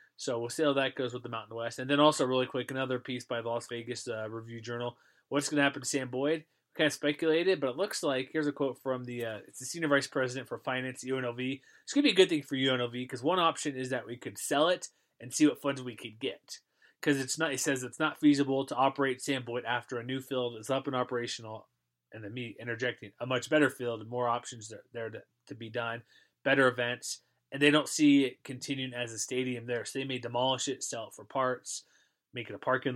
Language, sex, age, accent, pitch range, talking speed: English, male, 20-39, American, 120-140 Hz, 250 wpm